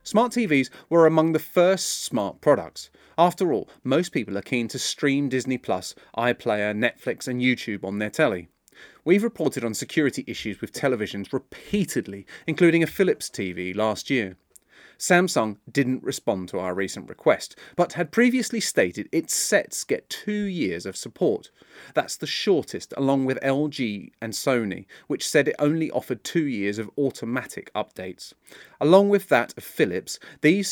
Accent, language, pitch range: British, English, 110-170 Hz